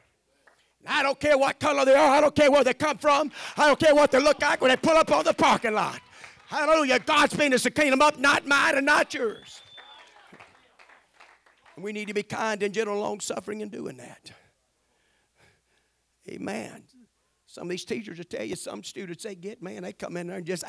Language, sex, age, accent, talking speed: English, male, 50-69, American, 210 wpm